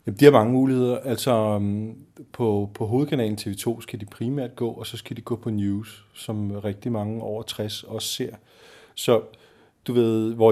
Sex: male